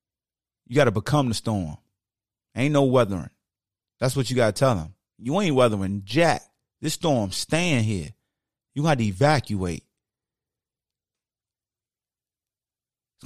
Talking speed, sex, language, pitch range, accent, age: 130 wpm, male, English, 100-140 Hz, American, 30-49